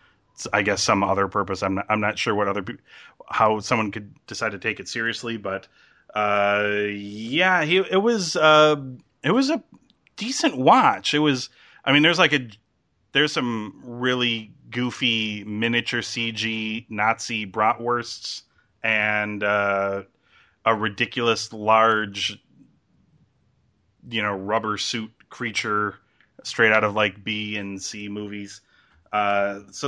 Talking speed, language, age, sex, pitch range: 135 wpm, English, 30-49, male, 105-125 Hz